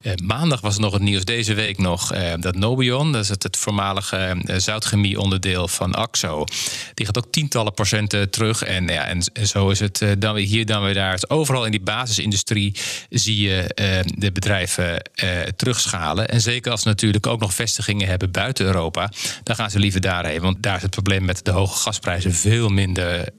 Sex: male